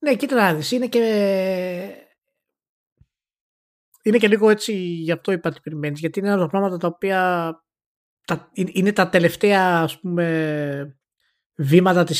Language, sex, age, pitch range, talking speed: Greek, male, 20-39, 140-180 Hz, 140 wpm